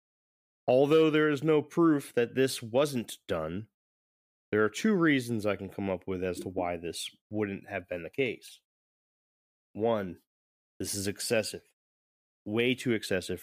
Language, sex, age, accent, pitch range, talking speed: English, male, 20-39, American, 90-120 Hz, 150 wpm